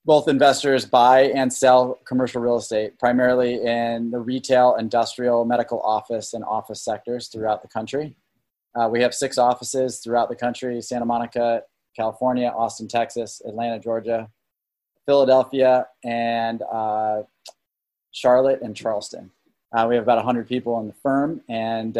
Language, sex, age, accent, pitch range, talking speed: English, male, 20-39, American, 115-125 Hz, 140 wpm